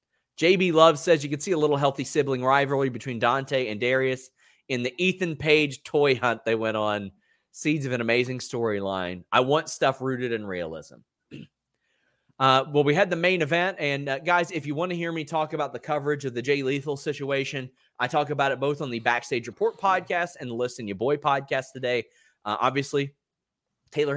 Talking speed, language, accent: 200 wpm, English, American